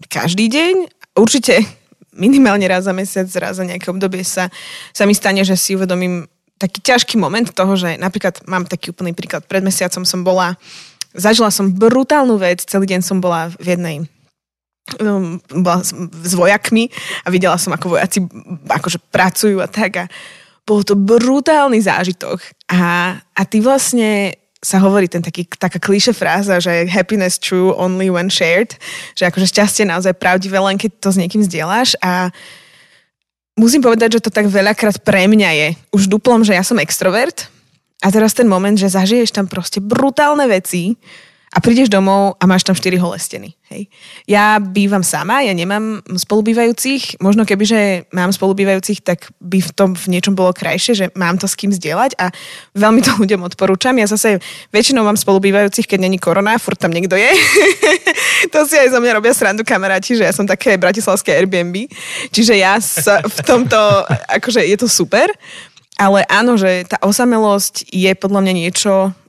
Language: Slovak